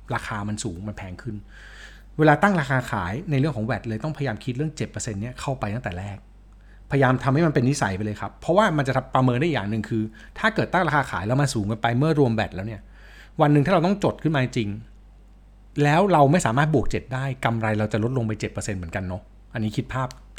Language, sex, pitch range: Thai, male, 105-145 Hz